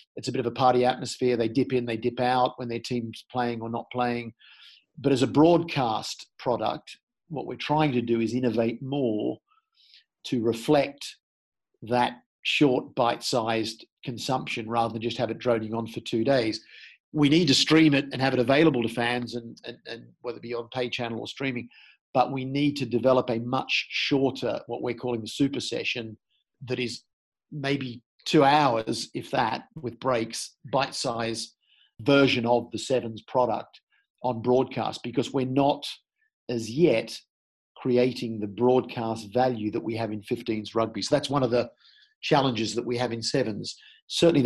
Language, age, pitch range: English, 50-69, 115-135 Hz